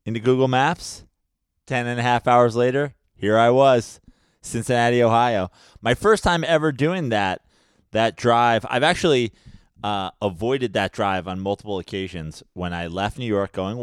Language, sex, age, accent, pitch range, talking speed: English, male, 20-39, American, 85-115 Hz, 160 wpm